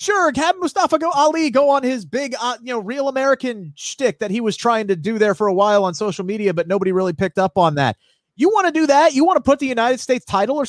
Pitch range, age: 180-255 Hz, 30-49